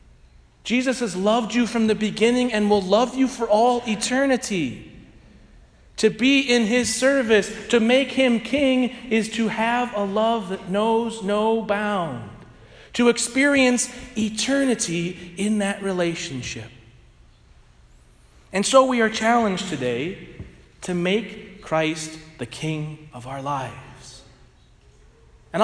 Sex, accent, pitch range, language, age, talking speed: male, American, 175-240 Hz, English, 40-59, 125 wpm